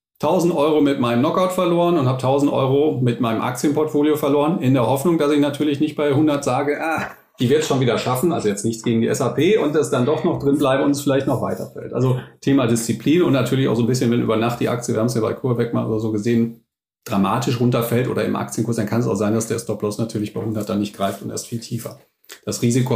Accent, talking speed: German, 255 wpm